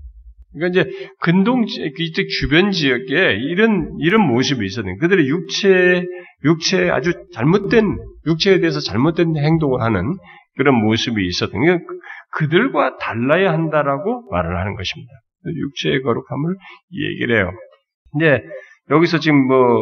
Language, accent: Korean, native